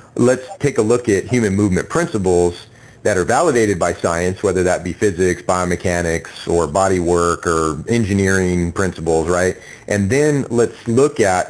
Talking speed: 155 wpm